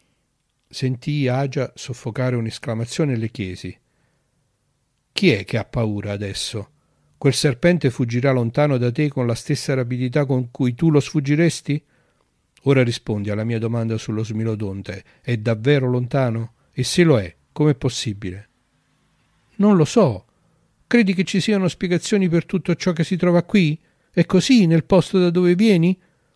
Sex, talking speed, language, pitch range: male, 150 wpm, Italian, 115-150 Hz